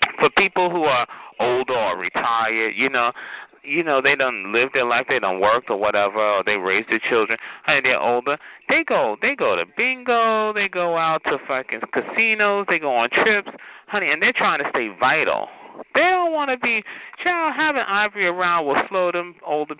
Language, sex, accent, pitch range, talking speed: English, male, American, 145-220 Hz, 195 wpm